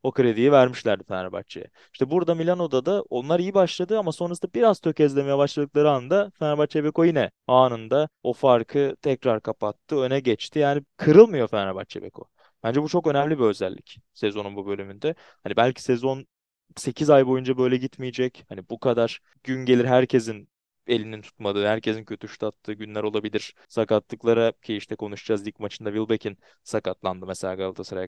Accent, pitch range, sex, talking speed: native, 110-140 Hz, male, 155 wpm